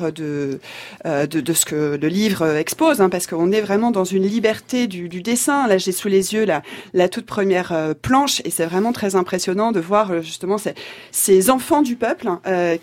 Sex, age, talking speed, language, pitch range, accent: female, 30-49, 215 wpm, French, 180-235 Hz, French